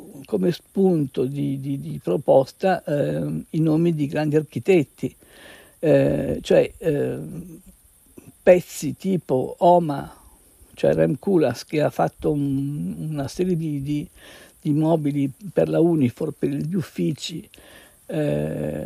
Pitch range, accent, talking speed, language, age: 150-195 Hz, native, 120 wpm, Italian, 60-79